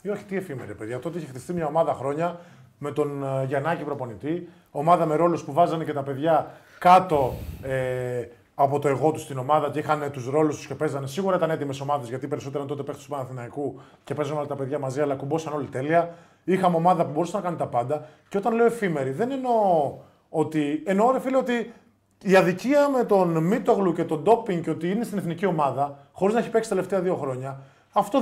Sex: male